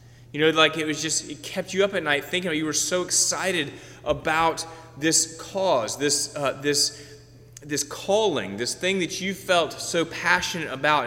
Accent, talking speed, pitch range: American, 185 wpm, 120-180 Hz